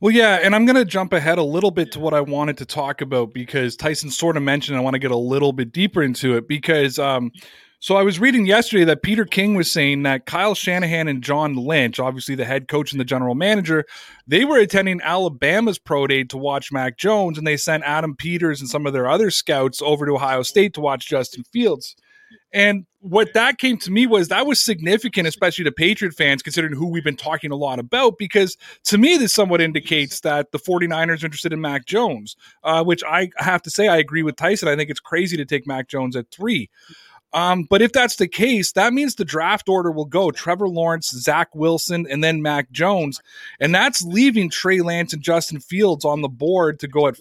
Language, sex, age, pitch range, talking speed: English, male, 20-39, 145-195 Hz, 225 wpm